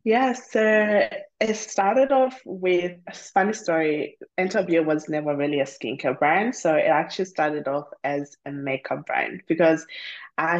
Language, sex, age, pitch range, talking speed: English, female, 20-39, 155-195 Hz, 145 wpm